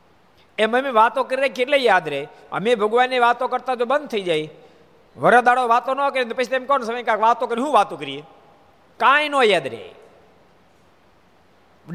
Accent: native